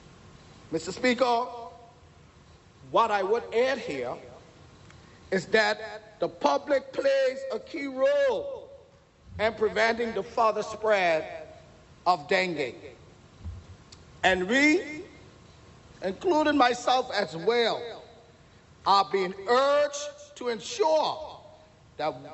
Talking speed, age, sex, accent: 90 wpm, 40-59, male, American